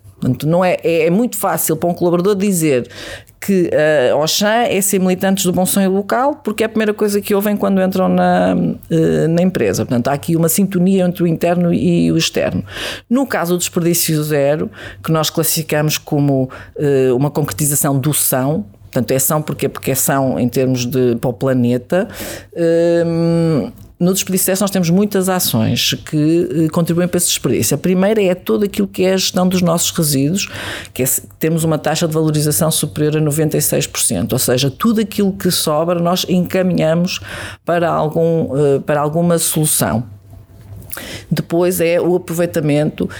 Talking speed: 170 wpm